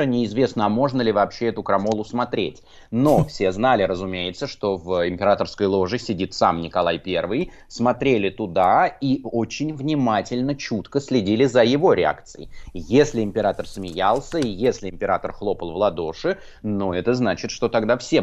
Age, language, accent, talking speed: 20-39, Russian, native, 150 wpm